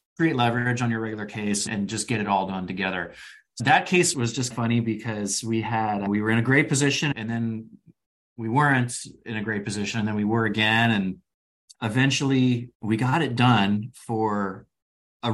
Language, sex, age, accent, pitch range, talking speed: English, male, 30-49, American, 100-125 Hz, 190 wpm